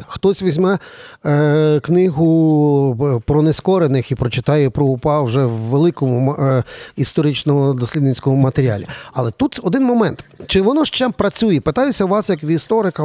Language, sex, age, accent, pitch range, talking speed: Ukrainian, male, 40-59, native, 140-180 Hz, 140 wpm